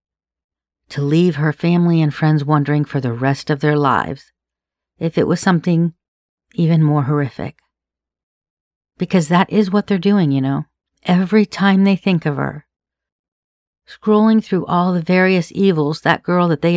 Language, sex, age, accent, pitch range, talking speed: English, female, 50-69, American, 150-180 Hz, 155 wpm